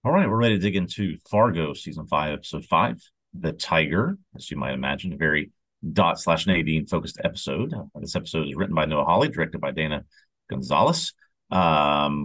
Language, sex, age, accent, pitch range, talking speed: English, male, 40-59, American, 75-95 Hz, 180 wpm